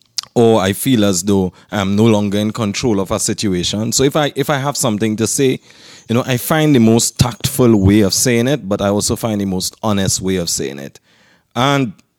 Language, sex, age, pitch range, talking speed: English, male, 30-49, 100-135 Hz, 220 wpm